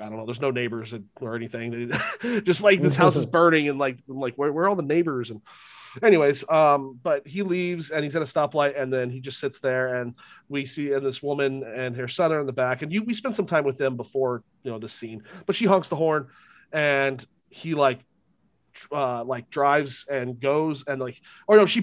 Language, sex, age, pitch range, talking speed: English, male, 30-49, 125-155 Hz, 235 wpm